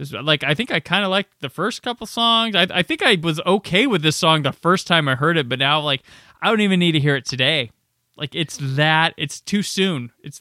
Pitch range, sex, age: 125-165 Hz, male, 20-39